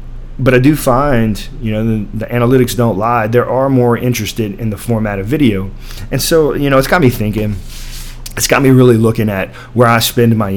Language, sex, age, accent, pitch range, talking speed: English, male, 30-49, American, 100-125 Hz, 215 wpm